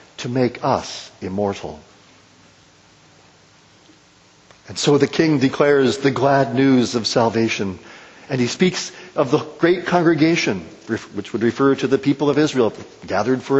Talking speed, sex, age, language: 135 wpm, male, 50-69, English